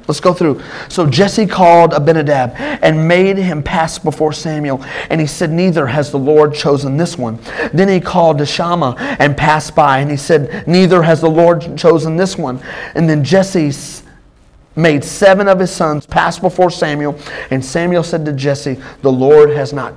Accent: American